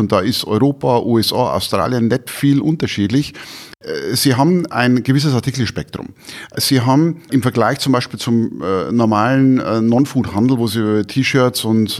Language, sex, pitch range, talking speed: German, male, 115-145 Hz, 150 wpm